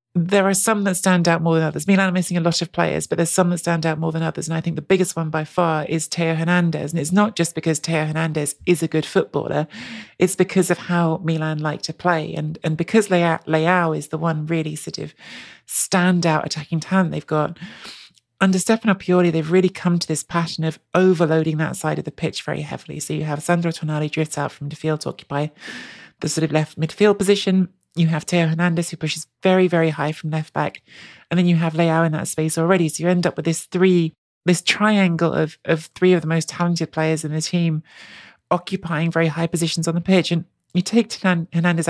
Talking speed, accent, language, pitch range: 230 wpm, British, English, 160-185 Hz